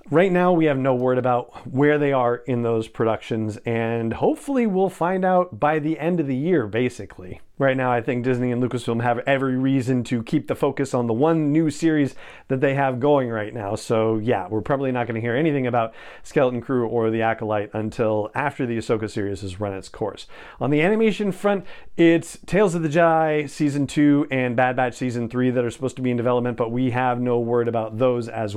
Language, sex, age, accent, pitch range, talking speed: English, male, 40-59, American, 115-150 Hz, 220 wpm